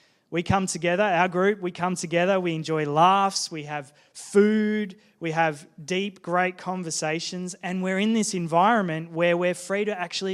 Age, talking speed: 20-39, 170 wpm